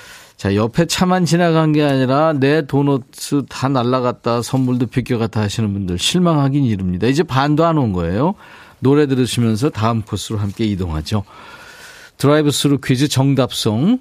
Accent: native